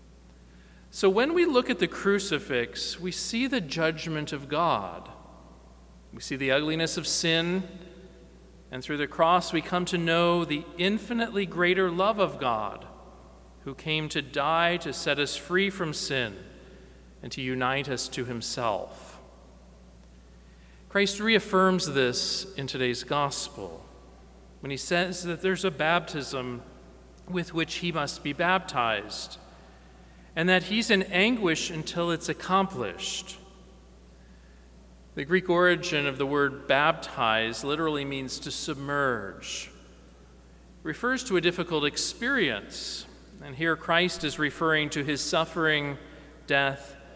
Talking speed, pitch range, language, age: 130 wpm, 115-175 Hz, English, 40-59